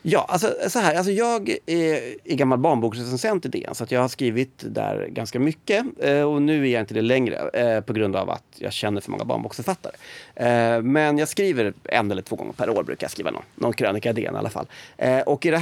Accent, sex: native, male